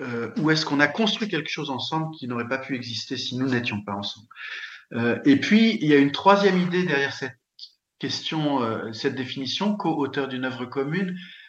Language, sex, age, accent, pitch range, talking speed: French, male, 50-69, French, 120-180 Hz, 200 wpm